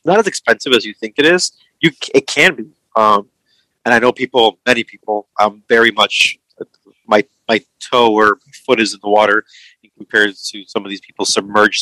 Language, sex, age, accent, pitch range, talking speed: English, male, 30-49, American, 105-120 Hz, 205 wpm